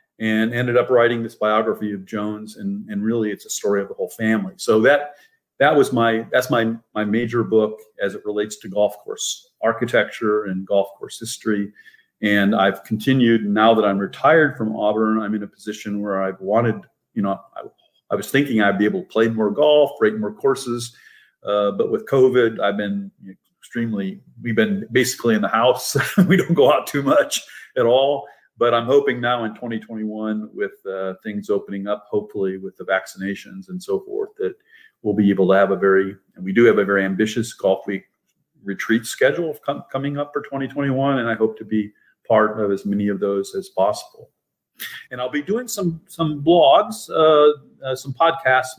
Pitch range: 105-150 Hz